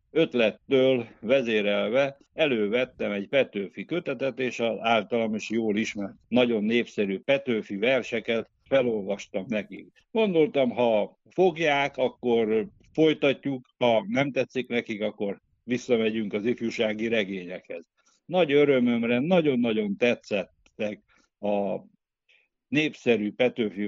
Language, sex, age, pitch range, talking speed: Hungarian, male, 60-79, 115-145 Hz, 100 wpm